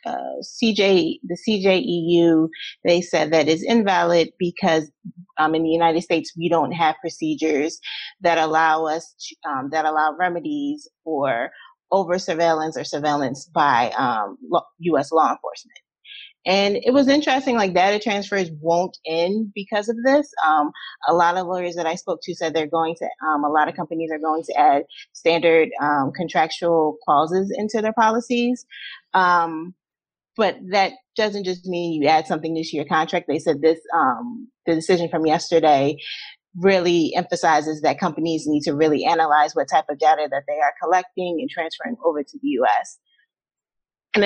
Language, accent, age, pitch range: English, American, 30-49, 160-195 Hz